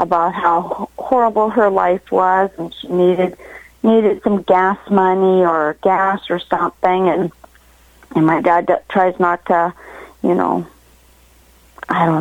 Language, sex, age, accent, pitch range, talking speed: English, female, 40-59, American, 170-195 Hz, 145 wpm